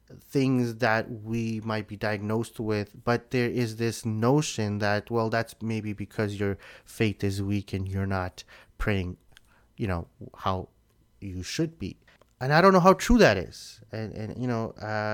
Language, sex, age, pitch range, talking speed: English, male, 30-49, 110-135 Hz, 175 wpm